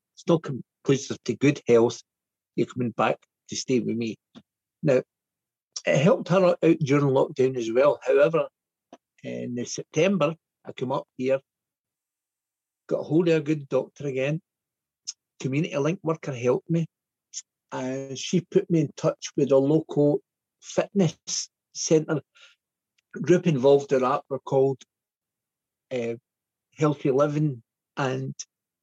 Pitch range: 130-160 Hz